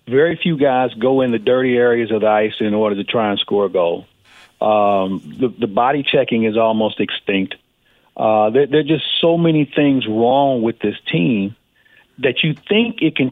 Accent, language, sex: American, English, male